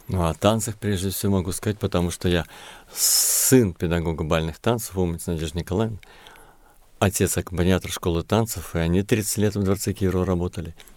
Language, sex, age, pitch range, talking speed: Russian, male, 50-69, 85-105 Hz, 155 wpm